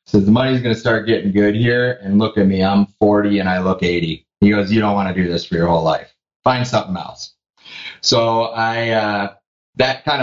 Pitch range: 100-115 Hz